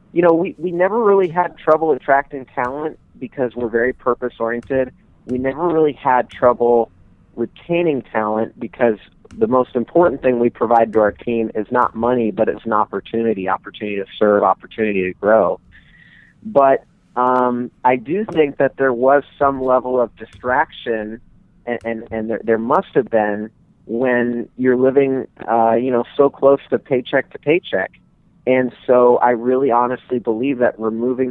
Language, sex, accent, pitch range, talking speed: English, male, American, 115-135 Hz, 160 wpm